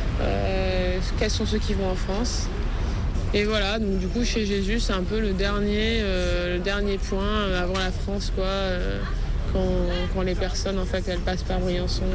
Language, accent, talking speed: French, French, 195 wpm